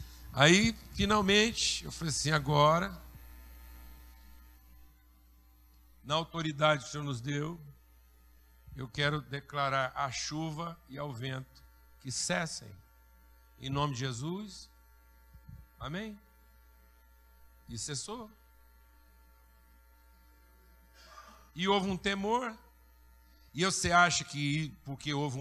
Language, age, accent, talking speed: Portuguese, 60-79, Brazilian, 95 wpm